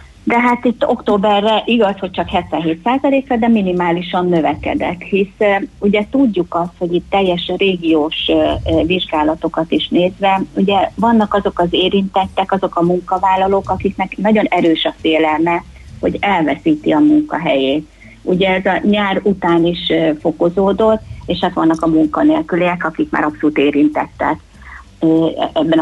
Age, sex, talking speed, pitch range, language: 30-49, female, 130 wpm, 165-235 Hz, Hungarian